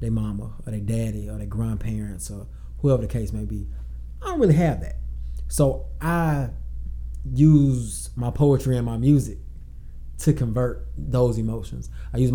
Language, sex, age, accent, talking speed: English, male, 20-39, American, 160 wpm